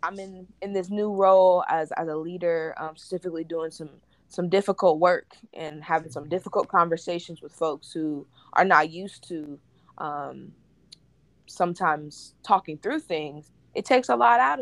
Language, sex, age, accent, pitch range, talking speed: English, female, 20-39, American, 155-200 Hz, 160 wpm